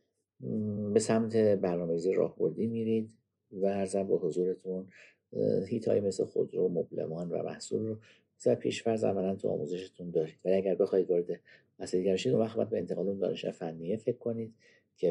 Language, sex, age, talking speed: Persian, male, 50-69, 150 wpm